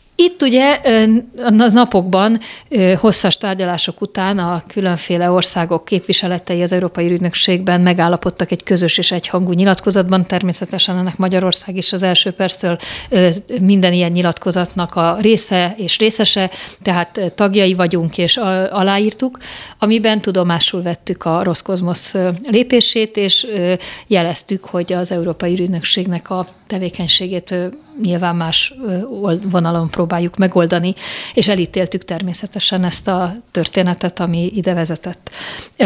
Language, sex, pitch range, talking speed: Hungarian, female, 175-200 Hz, 115 wpm